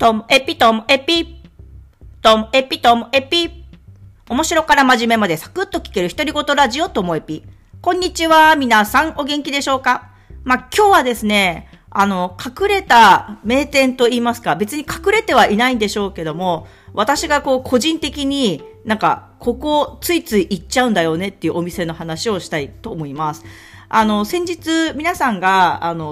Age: 40-59